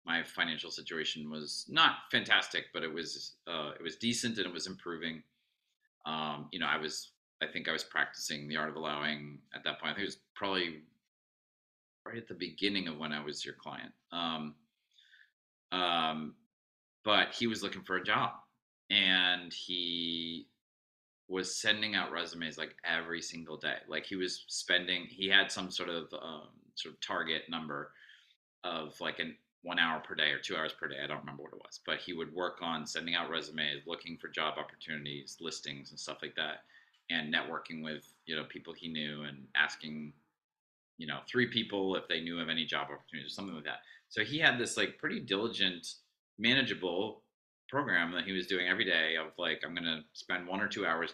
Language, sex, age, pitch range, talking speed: English, male, 30-49, 75-95 Hz, 195 wpm